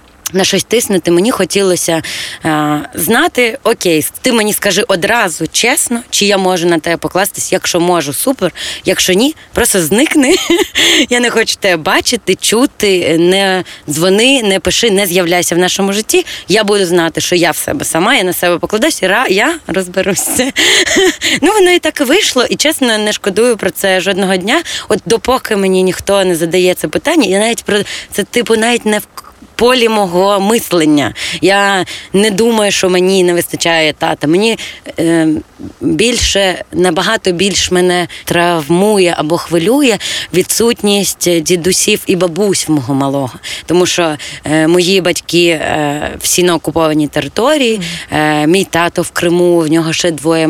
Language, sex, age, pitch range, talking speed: Ukrainian, female, 20-39, 165-215 Hz, 155 wpm